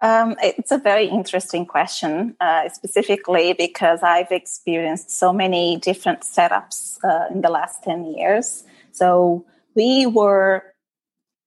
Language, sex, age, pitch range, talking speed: English, female, 30-49, 170-210 Hz, 125 wpm